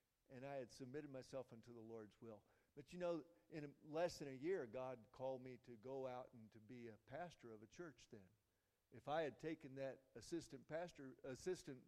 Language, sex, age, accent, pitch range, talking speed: English, male, 50-69, American, 115-150 Hz, 195 wpm